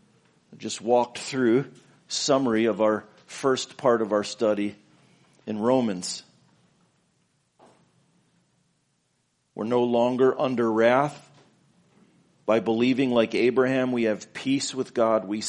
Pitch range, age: 110-140 Hz, 50-69